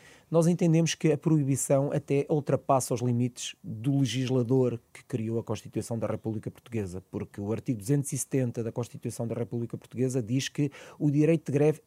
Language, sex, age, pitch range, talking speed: Portuguese, male, 30-49, 130-175 Hz, 165 wpm